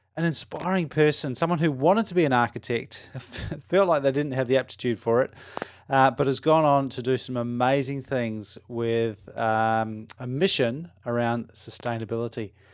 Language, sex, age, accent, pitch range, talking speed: English, male, 30-49, Australian, 115-135 Hz, 165 wpm